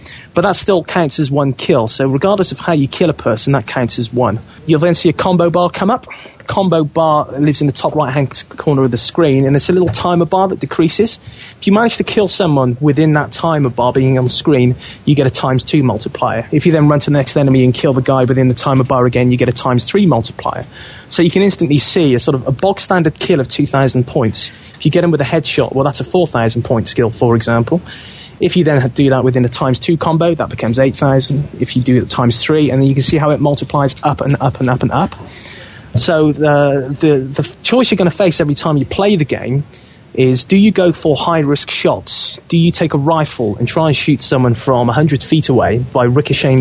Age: 30-49